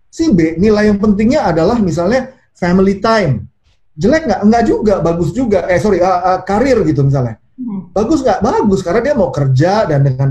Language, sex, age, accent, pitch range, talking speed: Indonesian, male, 30-49, native, 150-210 Hz, 180 wpm